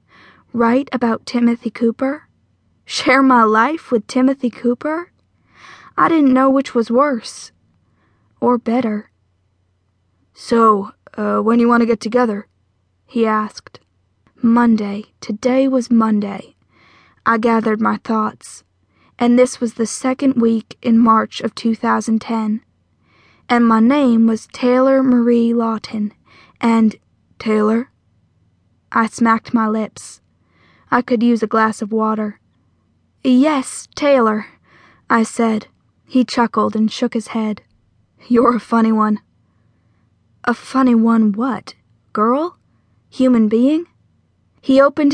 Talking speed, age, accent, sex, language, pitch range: 120 wpm, 10-29, American, female, English, 215-245 Hz